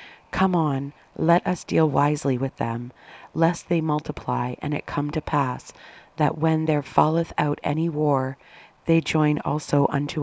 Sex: female